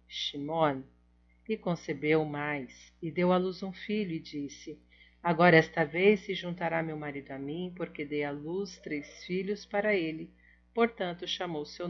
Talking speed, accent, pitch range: 155 wpm, Brazilian, 140-185 Hz